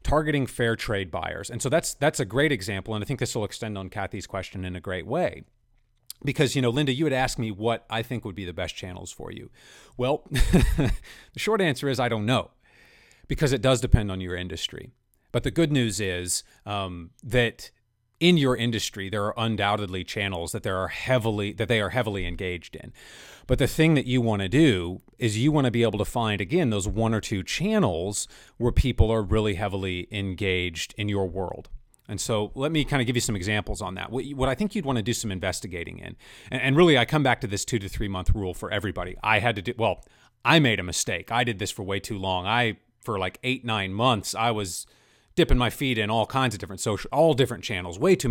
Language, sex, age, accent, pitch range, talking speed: English, male, 30-49, American, 100-125 Hz, 230 wpm